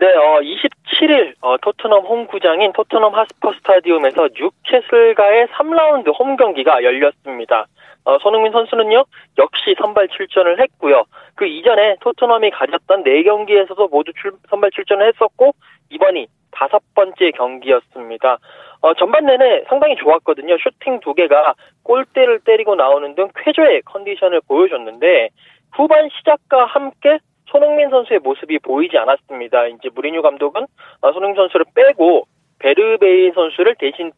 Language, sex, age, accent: Korean, male, 20-39, native